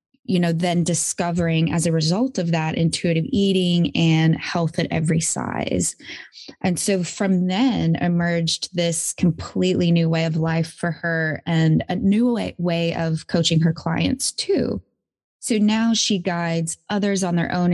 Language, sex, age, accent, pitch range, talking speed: English, female, 20-39, American, 165-185 Hz, 155 wpm